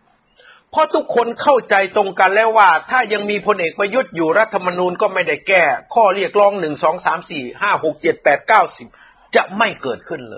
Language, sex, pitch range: Thai, male, 205-255 Hz